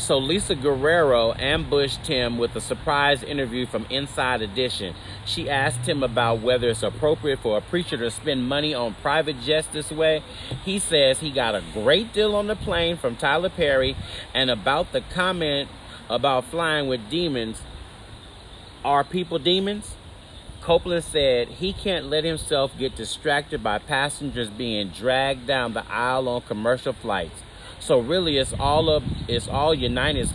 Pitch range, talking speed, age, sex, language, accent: 115-165 Hz, 160 wpm, 40-59, male, English, American